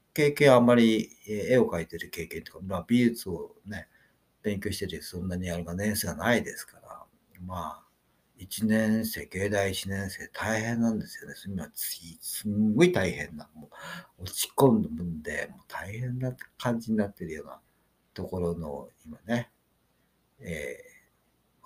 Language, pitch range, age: Japanese, 85-115 Hz, 50-69